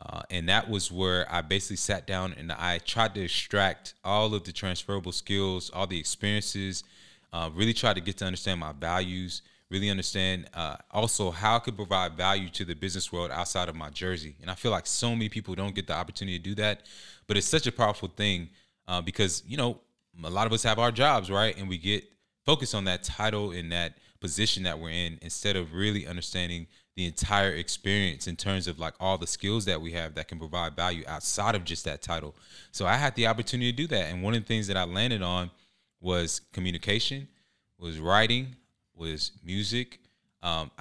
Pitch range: 85-105 Hz